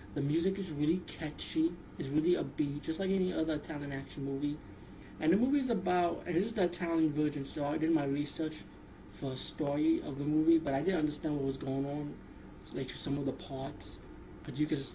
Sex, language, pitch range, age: male, English, 140-160 Hz, 20-39